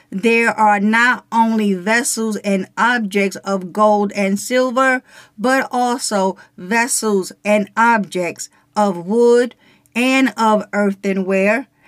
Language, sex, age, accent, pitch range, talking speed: English, female, 50-69, American, 205-265 Hz, 105 wpm